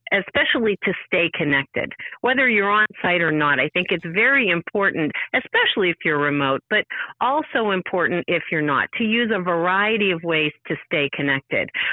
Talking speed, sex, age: 170 wpm, female, 50-69